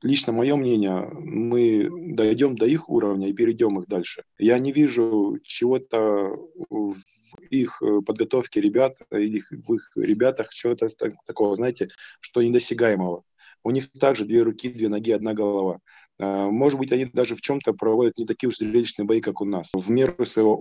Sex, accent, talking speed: male, native, 160 wpm